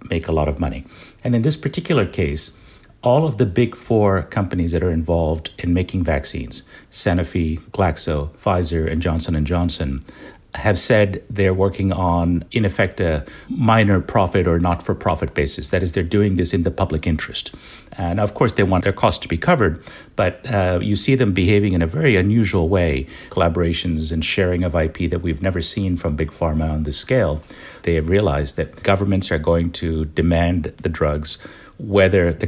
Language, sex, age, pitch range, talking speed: English, male, 50-69, 80-100 Hz, 185 wpm